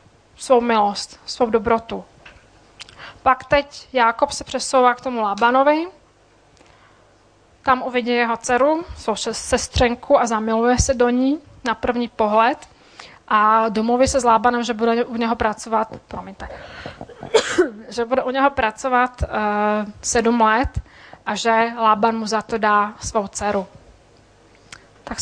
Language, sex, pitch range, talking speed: Czech, female, 220-245 Hz, 130 wpm